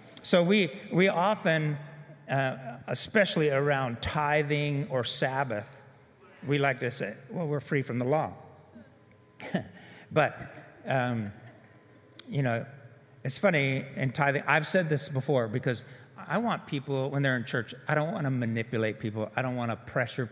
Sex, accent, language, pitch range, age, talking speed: male, American, English, 130-170 Hz, 50-69, 150 wpm